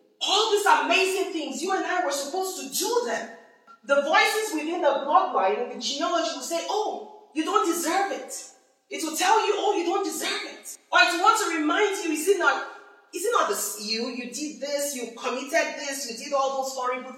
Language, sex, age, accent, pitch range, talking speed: English, female, 40-59, Nigerian, 270-400 Hz, 215 wpm